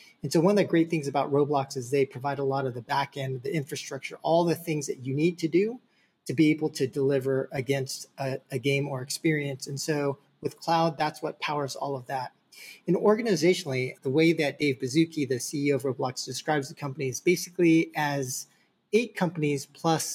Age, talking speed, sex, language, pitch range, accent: 30-49, 205 wpm, male, English, 135-165 Hz, American